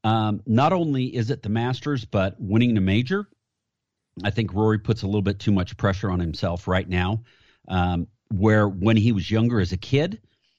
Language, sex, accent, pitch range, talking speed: English, male, American, 100-120 Hz, 195 wpm